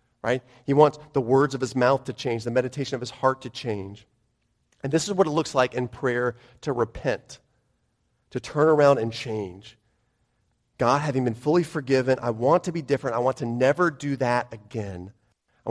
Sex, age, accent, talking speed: male, 30-49, American, 195 wpm